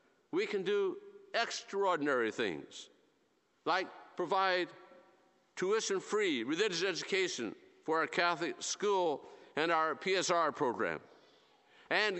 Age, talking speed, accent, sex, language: 50-69, 95 wpm, American, male, English